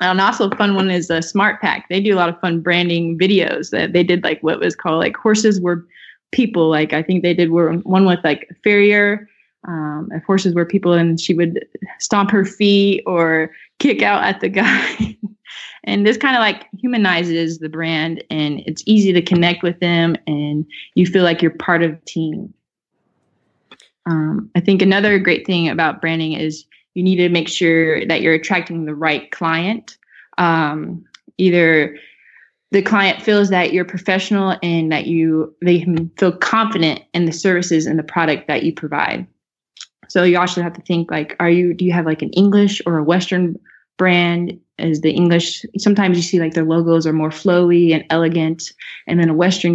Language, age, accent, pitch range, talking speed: English, 20-39, American, 160-190 Hz, 195 wpm